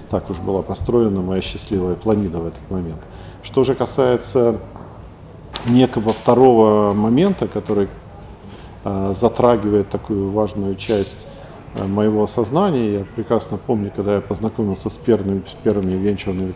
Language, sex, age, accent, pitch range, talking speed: Russian, male, 50-69, native, 95-115 Hz, 125 wpm